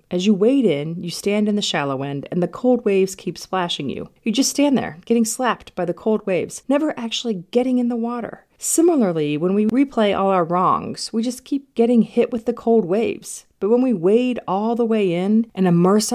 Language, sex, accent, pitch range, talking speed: English, female, American, 180-240 Hz, 220 wpm